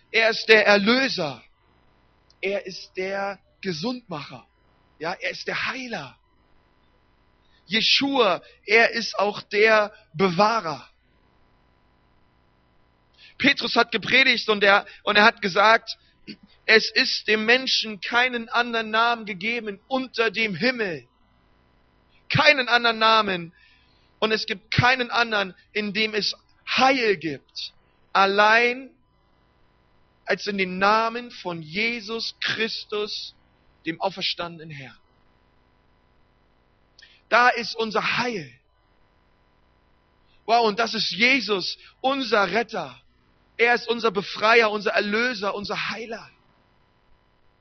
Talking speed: 105 wpm